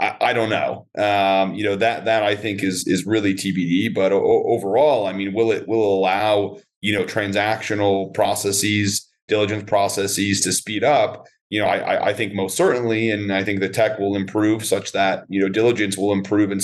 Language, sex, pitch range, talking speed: English, male, 95-110 Hz, 200 wpm